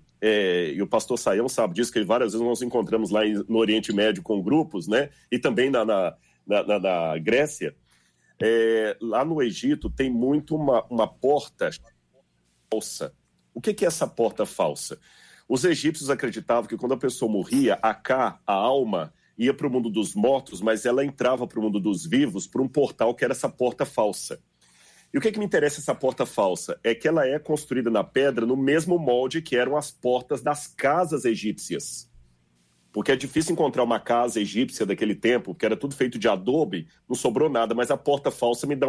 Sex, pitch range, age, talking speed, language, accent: male, 115-150 Hz, 40-59, 200 wpm, Portuguese, Brazilian